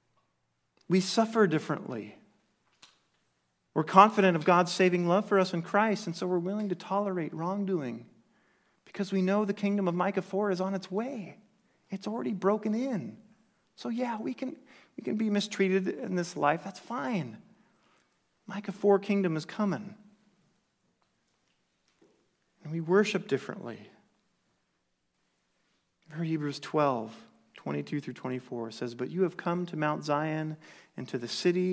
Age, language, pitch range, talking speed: 40-59, English, 150-200 Hz, 140 wpm